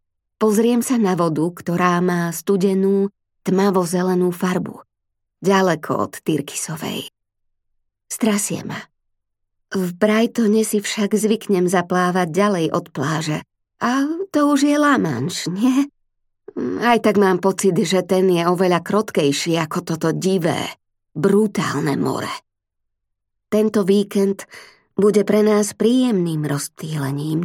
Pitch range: 155-210 Hz